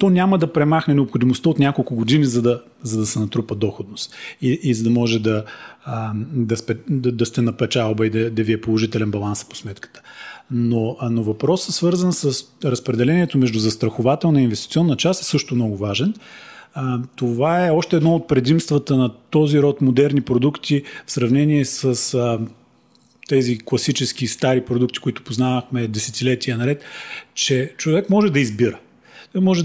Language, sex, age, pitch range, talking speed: Bulgarian, male, 40-59, 125-165 Hz, 170 wpm